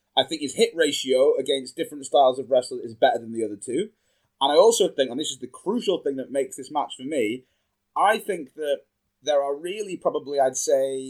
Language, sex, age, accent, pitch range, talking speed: English, male, 20-39, British, 130-180 Hz, 220 wpm